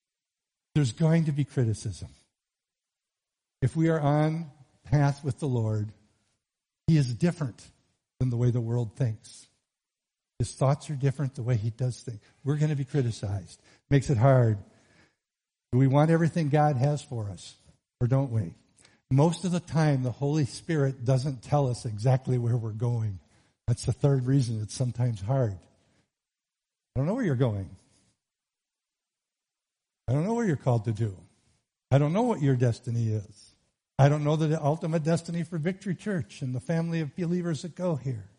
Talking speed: 170 wpm